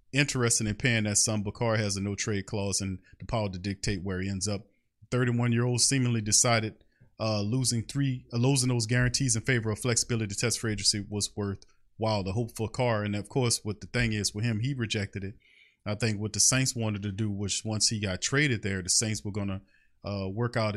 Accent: American